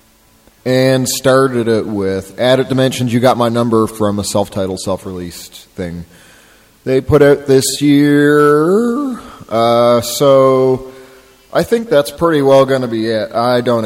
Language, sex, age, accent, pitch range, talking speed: English, male, 30-49, American, 95-130 Hz, 145 wpm